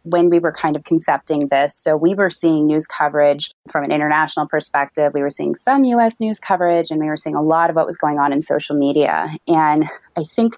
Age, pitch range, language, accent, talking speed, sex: 20-39, 150-175 Hz, English, American, 235 wpm, female